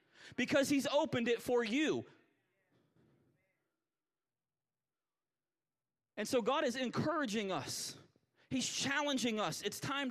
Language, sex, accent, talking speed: English, male, American, 100 wpm